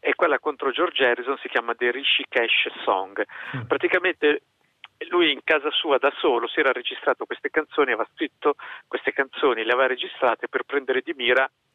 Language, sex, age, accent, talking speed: Italian, male, 50-69, native, 175 wpm